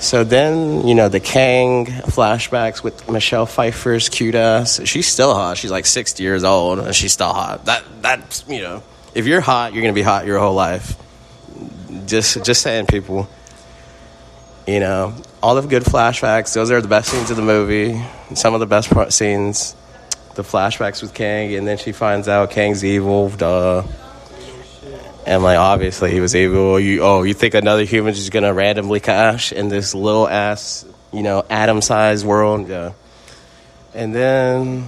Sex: male